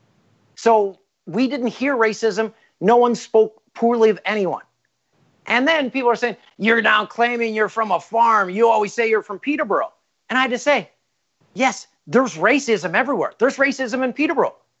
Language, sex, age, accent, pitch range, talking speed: English, male, 40-59, American, 210-255 Hz, 170 wpm